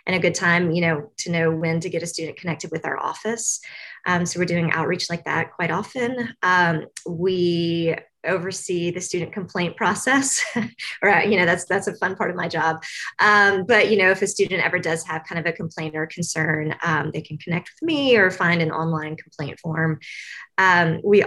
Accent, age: American, 20-39